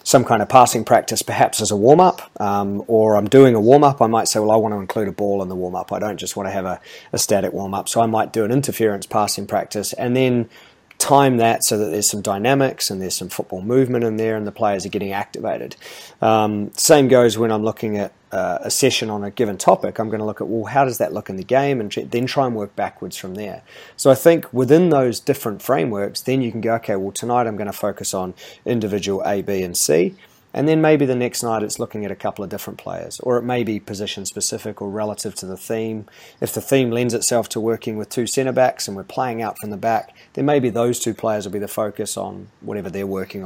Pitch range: 105-125 Hz